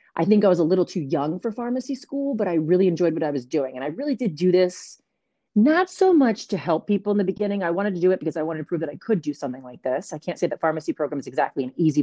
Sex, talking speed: female, 305 wpm